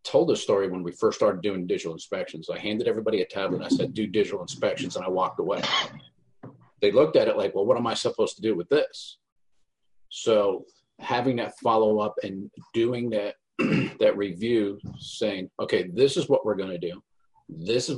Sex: male